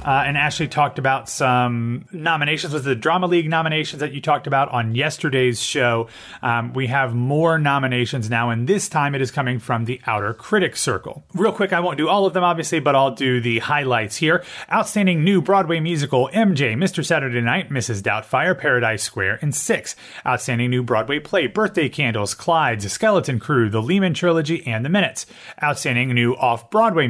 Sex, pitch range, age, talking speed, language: male, 120-165 Hz, 30-49, 185 wpm, English